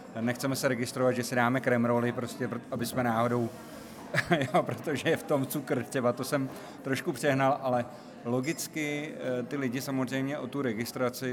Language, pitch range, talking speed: Czech, 115-135 Hz, 165 wpm